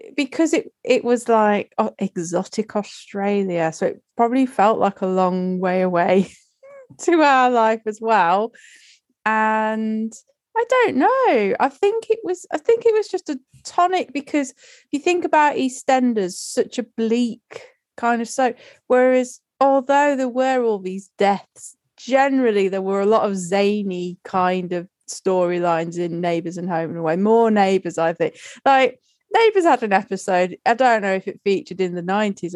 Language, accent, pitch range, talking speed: English, British, 190-265 Hz, 165 wpm